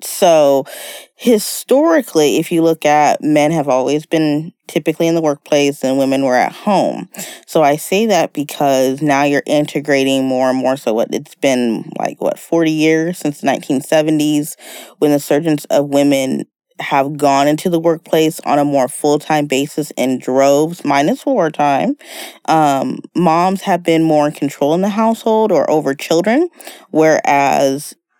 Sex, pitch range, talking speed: female, 145-200 Hz, 160 wpm